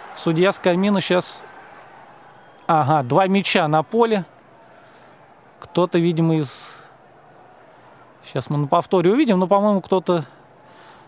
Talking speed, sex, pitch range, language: 105 wpm, male, 160-200 Hz, Russian